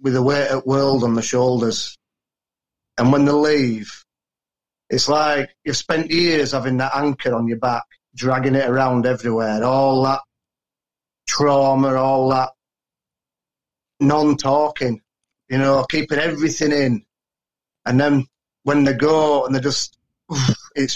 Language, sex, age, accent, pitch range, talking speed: English, male, 40-59, British, 125-140 Hz, 135 wpm